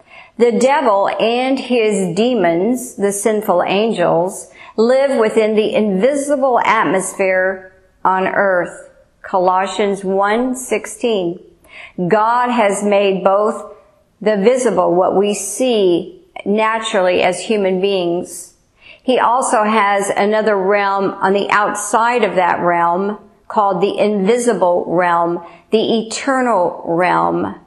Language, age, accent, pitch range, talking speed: English, 50-69, American, 180-220 Hz, 105 wpm